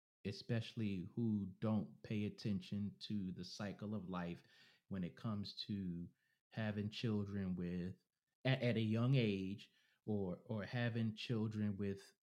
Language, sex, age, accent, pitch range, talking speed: English, male, 30-49, American, 100-130 Hz, 130 wpm